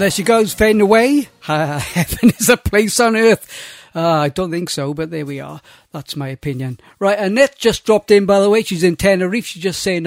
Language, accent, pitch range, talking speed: English, British, 155-205 Hz, 220 wpm